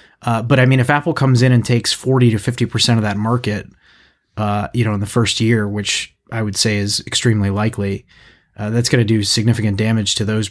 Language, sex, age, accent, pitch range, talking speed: English, male, 30-49, American, 110-125 Hz, 225 wpm